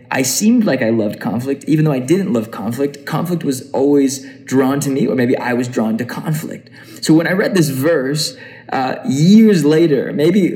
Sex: male